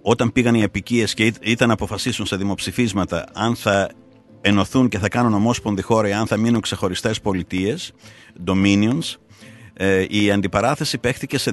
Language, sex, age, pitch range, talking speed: Greek, male, 50-69, 95-125 Hz, 145 wpm